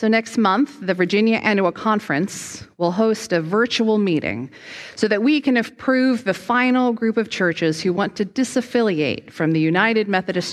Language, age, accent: English, 40-59, American